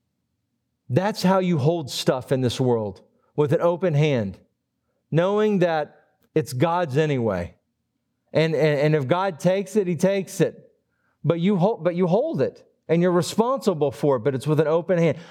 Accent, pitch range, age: American, 150-195 Hz, 40-59